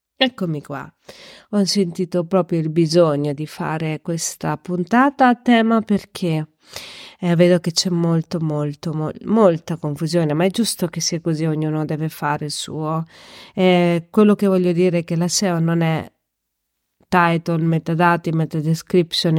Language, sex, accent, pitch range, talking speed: Italian, female, native, 160-195 Hz, 145 wpm